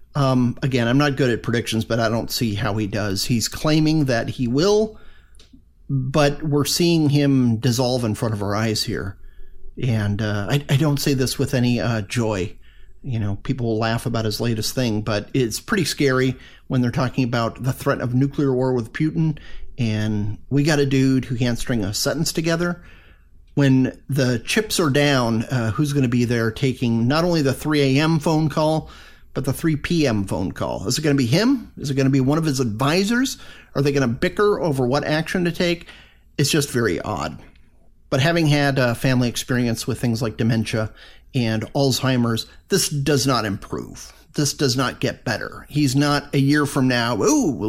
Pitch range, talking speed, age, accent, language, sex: 115-145 Hz, 200 wpm, 40-59, American, English, male